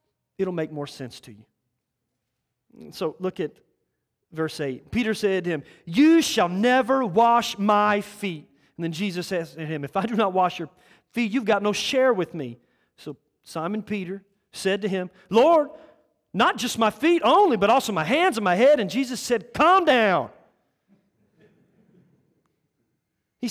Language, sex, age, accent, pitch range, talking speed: English, male, 40-59, American, 150-220 Hz, 165 wpm